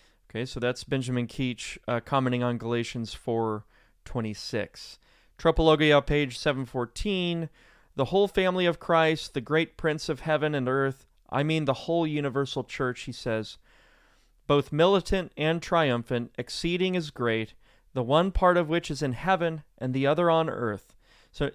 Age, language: 30-49, English